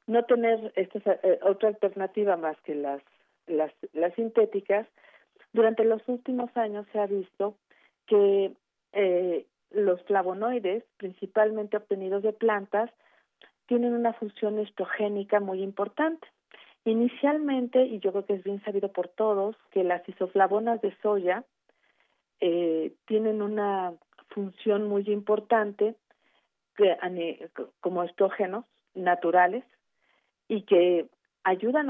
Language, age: Spanish, 50-69